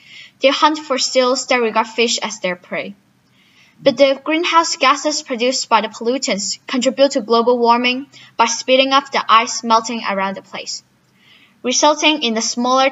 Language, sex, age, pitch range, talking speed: English, female, 10-29, 220-270 Hz, 165 wpm